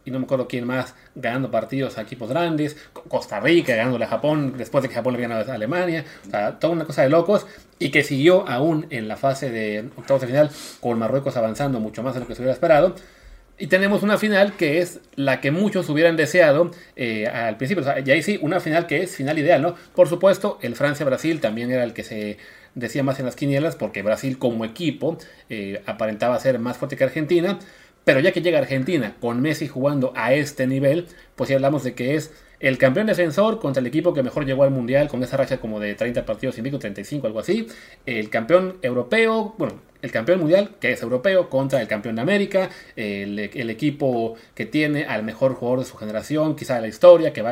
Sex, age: male, 30-49